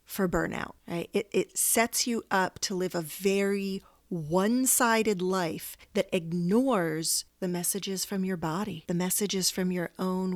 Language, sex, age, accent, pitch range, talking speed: English, female, 40-59, American, 180-225 Hz, 155 wpm